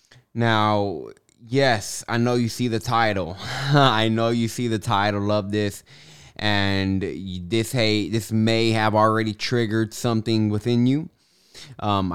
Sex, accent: male, American